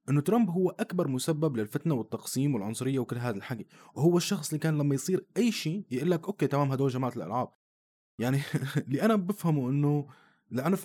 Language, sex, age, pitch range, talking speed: Arabic, male, 20-39, 130-175 Hz, 175 wpm